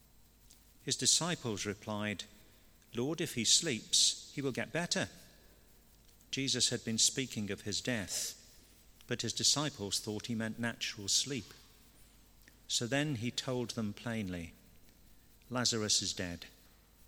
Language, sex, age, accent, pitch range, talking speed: English, male, 50-69, British, 100-120 Hz, 125 wpm